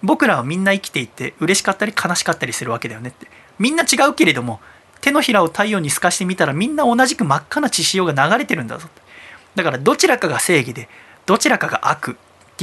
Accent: native